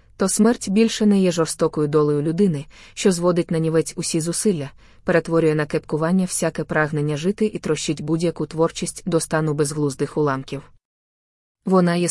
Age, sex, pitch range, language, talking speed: 20-39, female, 155-185 Hz, Ukrainian, 150 wpm